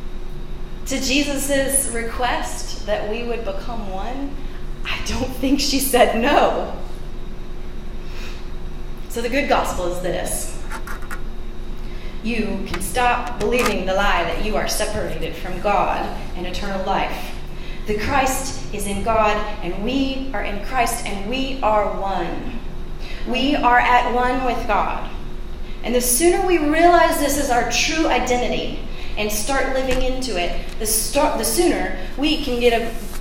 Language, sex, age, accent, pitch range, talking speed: English, female, 30-49, American, 200-255 Hz, 135 wpm